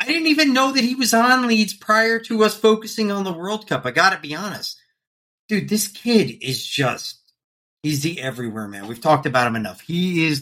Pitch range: 135-195 Hz